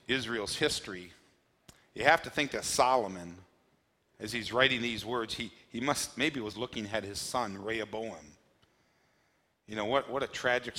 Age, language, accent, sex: 40-59, English, American, male